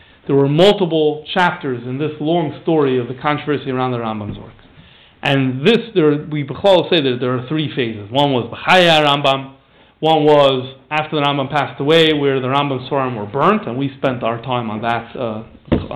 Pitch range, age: 135-185 Hz, 40-59